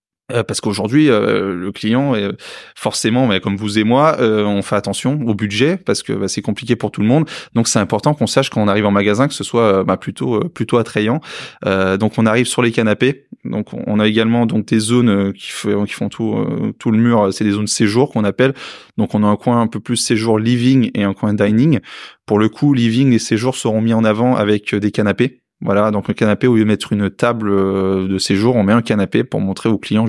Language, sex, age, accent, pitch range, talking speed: French, male, 20-39, French, 105-125 Hz, 220 wpm